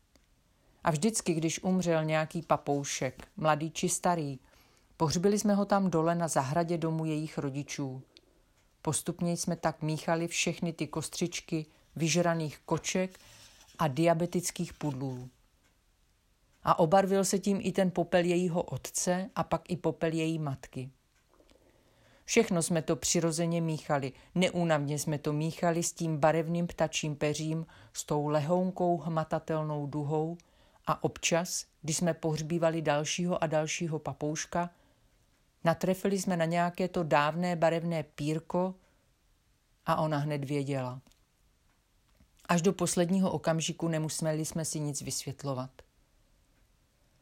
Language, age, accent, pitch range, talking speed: Czech, 40-59, native, 150-175 Hz, 120 wpm